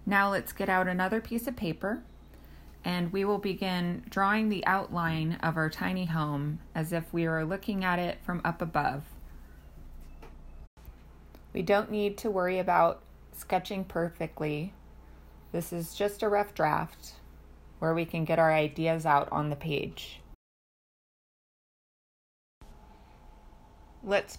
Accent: American